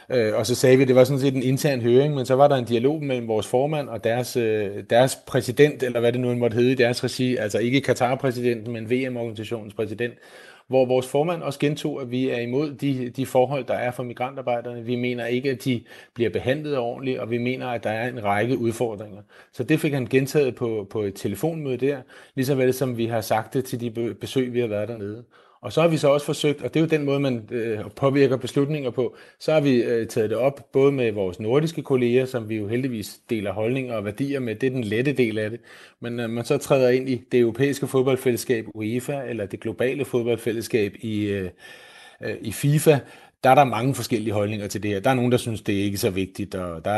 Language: Danish